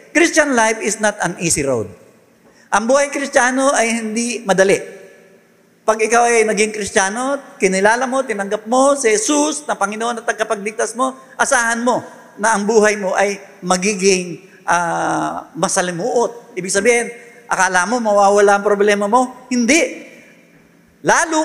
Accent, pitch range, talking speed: native, 135-225 Hz, 135 wpm